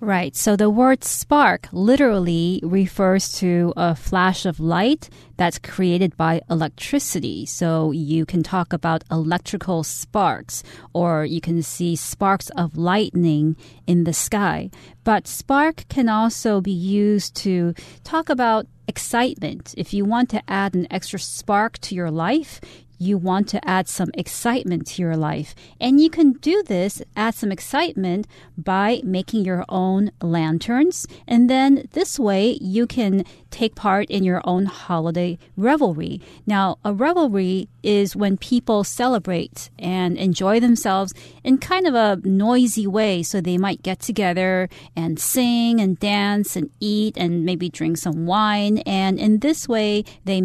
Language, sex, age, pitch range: Chinese, female, 40-59, 175-215 Hz